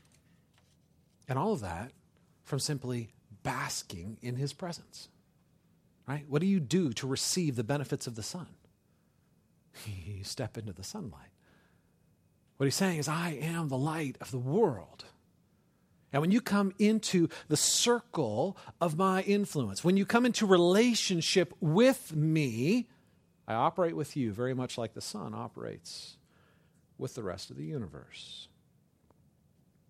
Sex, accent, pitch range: male, American, 120-180 Hz